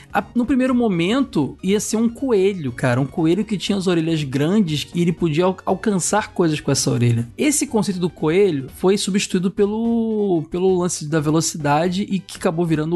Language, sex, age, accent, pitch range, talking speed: Portuguese, male, 20-39, Brazilian, 145-210 Hz, 175 wpm